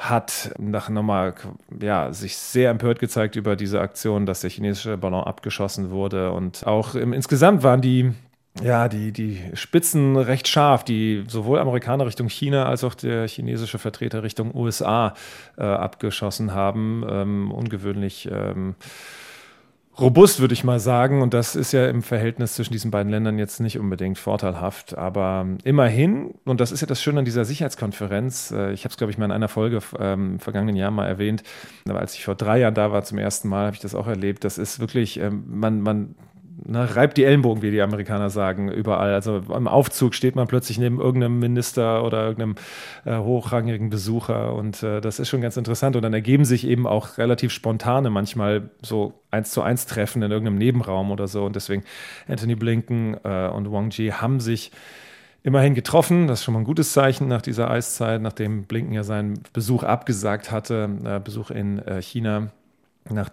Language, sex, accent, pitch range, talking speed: German, male, German, 100-125 Hz, 185 wpm